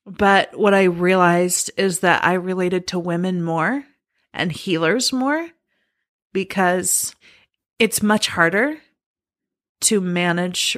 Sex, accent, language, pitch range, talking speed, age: female, American, English, 180-210 Hz, 110 wpm, 30-49